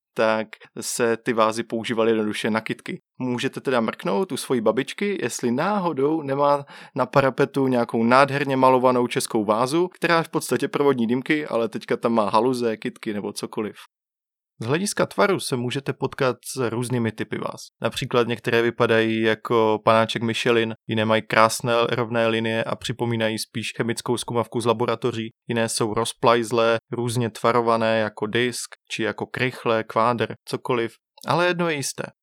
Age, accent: 20-39, native